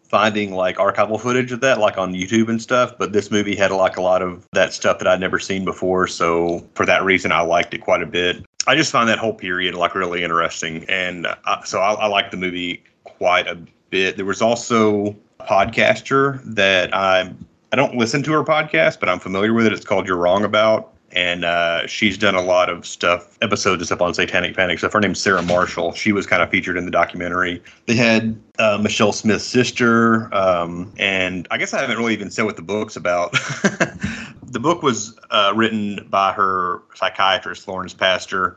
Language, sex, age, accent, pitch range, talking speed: English, male, 30-49, American, 90-110 Hz, 210 wpm